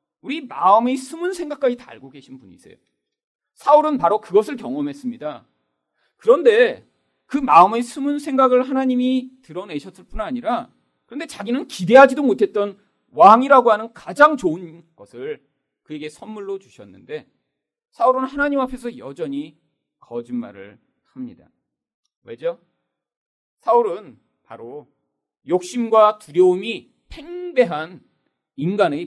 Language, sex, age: Korean, male, 40-59